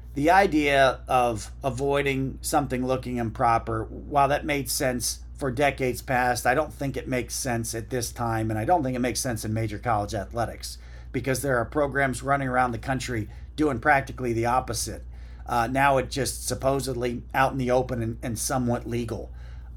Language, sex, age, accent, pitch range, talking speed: English, male, 40-59, American, 110-135 Hz, 180 wpm